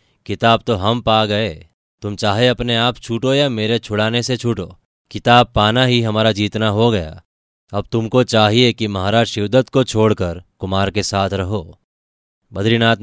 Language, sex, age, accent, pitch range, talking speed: Hindi, male, 20-39, native, 95-115 Hz, 160 wpm